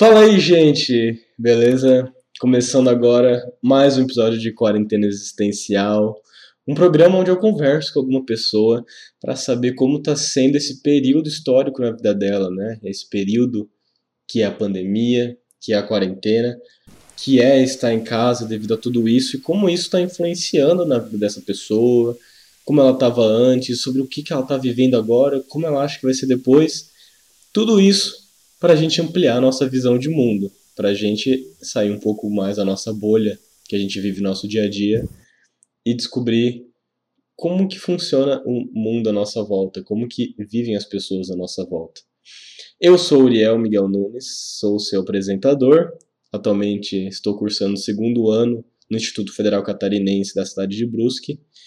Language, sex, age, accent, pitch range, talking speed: Portuguese, male, 20-39, Brazilian, 105-140 Hz, 175 wpm